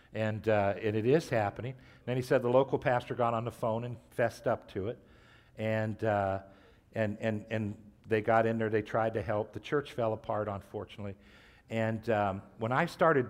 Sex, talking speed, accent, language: male, 205 wpm, American, English